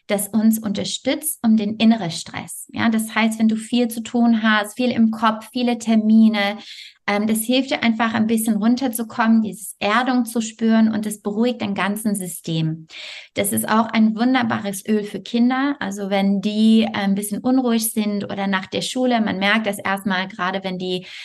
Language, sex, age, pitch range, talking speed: German, female, 20-39, 200-230 Hz, 180 wpm